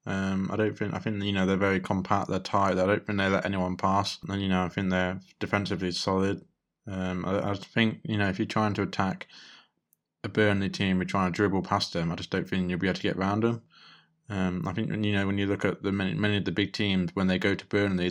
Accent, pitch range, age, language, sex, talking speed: British, 95-105 Hz, 20-39, English, male, 265 wpm